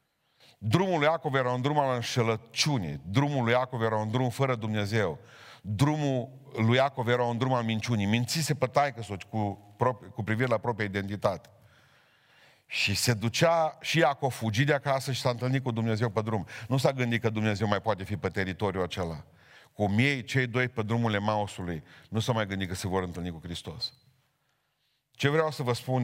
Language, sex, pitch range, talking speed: Romanian, male, 105-130 Hz, 190 wpm